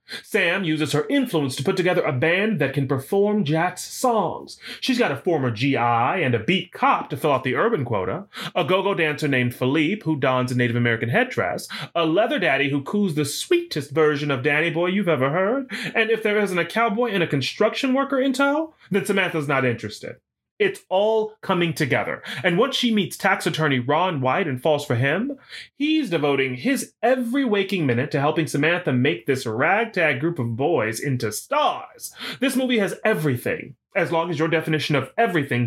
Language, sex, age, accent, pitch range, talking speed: English, male, 30-49, American, 140-200 Hz, 190 wpm